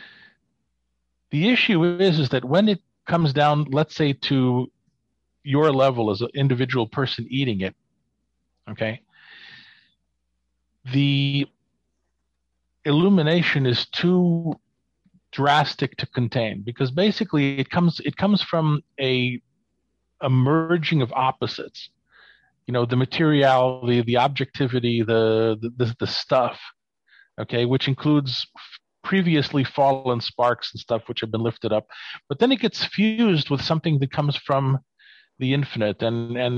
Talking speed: 130 wpm